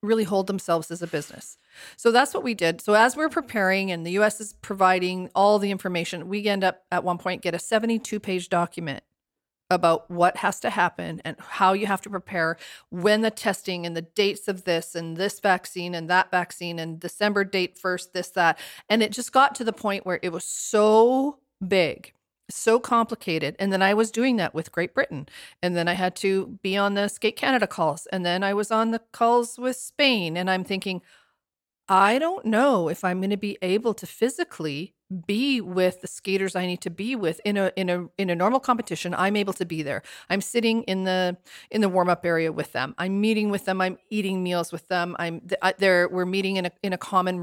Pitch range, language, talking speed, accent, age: 175-210 Hz, English, 220 wpm, American, 40-59